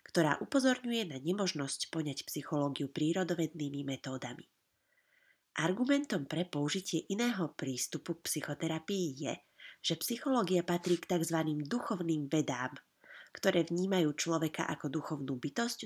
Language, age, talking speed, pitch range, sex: Slovak, 30-49, 105 wpm, 145-190 Hz, female